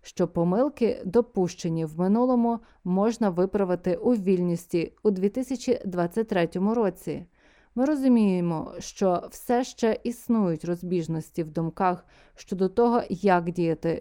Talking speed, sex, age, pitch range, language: 105 wpm, female, 20-39, 170-225 Hz, Ukrainian